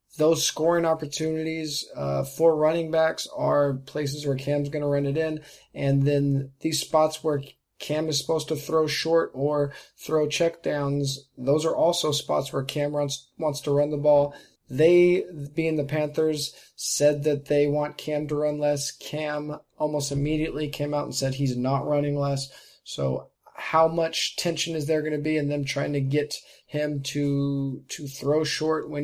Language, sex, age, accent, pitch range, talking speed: English, male, 20-39, American, 140-155 Hz, 175 wpm